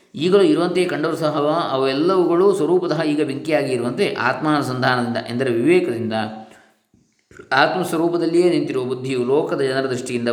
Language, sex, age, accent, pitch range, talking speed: Kannada, male, 20-39, native, 120-150 Hz, 115 wpm